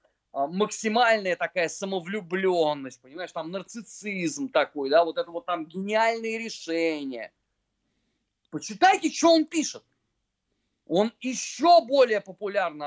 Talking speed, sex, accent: 105 wpm, male, native